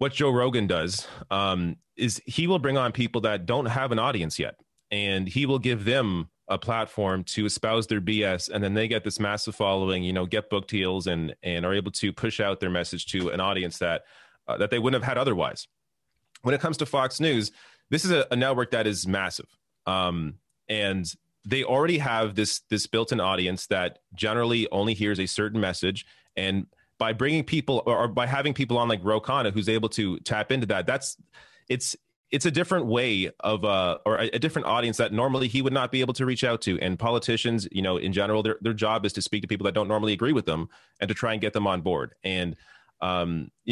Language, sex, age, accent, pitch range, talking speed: English, male, 30-49, American, 95-125 Hz, 220 wpm